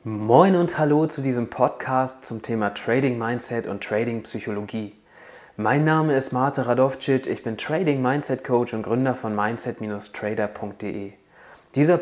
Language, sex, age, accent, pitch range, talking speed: German, male, 20-39, German, 110-135 Hz, 140 wpm